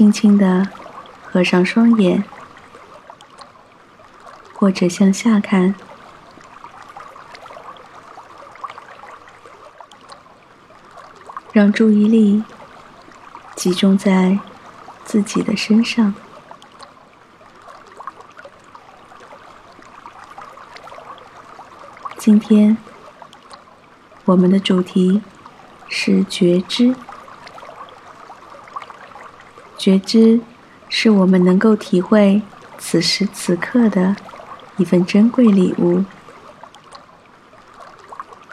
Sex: female